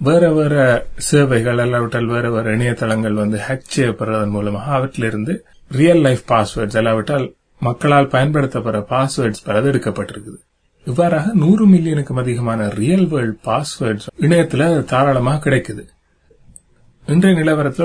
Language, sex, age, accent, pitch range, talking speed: Tamil, male, 30-49, native, 115-145 Hz, 110 wpm